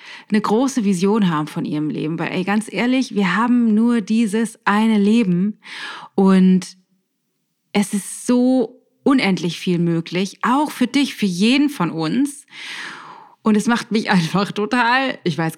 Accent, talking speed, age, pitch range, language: German, 145 wpm, 30-49, 175-220 Hz, German